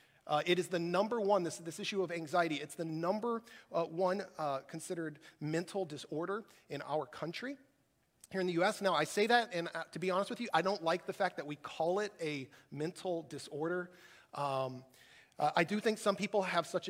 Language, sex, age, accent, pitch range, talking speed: English, male, 40-59, American, 160-215 Hz, 210 wpm